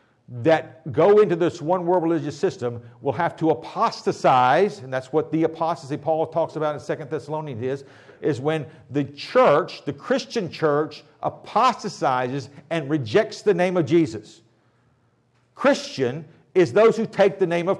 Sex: male